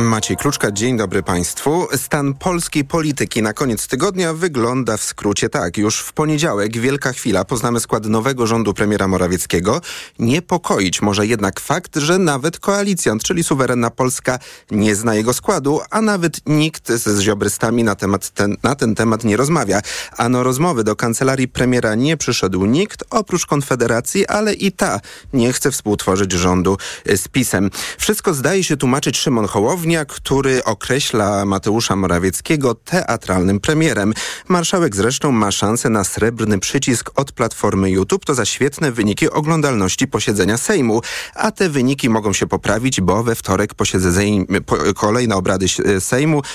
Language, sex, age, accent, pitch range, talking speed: Polish, male, 30-49, native, 105-145 Hz, 150 wpm